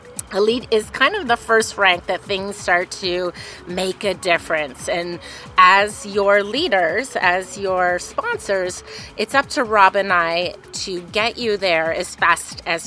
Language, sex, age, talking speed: English, female, 30-49, 160 wpm